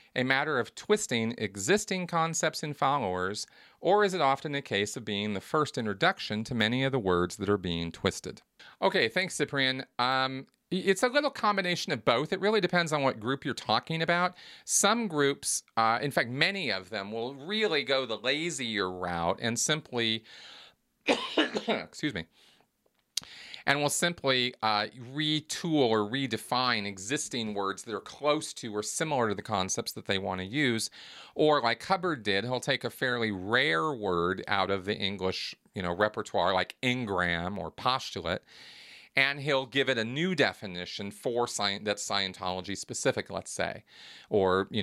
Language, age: English, 40-59